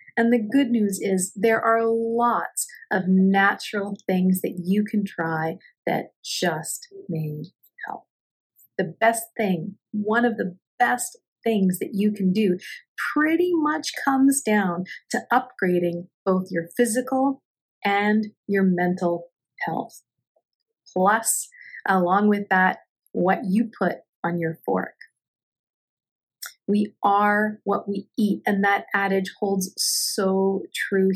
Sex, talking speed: female, 125 wpm